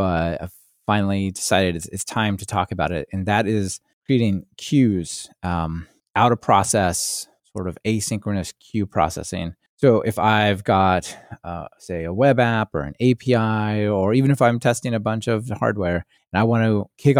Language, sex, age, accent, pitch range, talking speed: English, male, 20-39, American, 90-115 Hz, 175 wpm